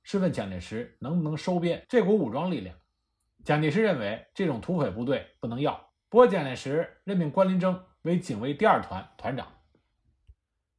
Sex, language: male, Chinese